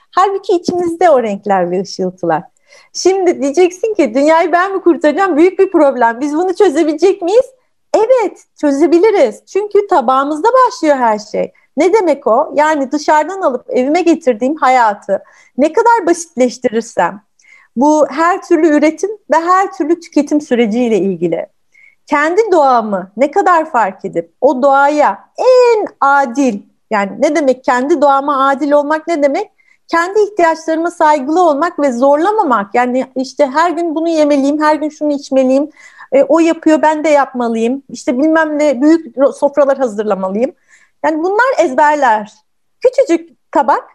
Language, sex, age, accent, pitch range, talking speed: Turkish, female, 40-59, native, 260-350 Hz, 140 wpm